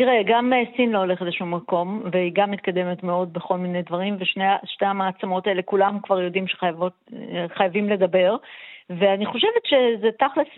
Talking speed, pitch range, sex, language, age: 145 wpm, 180-220 Hz, female, Hebrew, 50-69